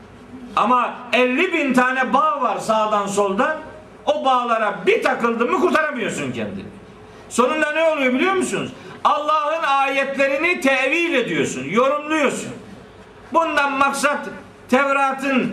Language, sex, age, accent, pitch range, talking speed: Turkish, male, 50-69, native, 235-290 Hz, 110 wpm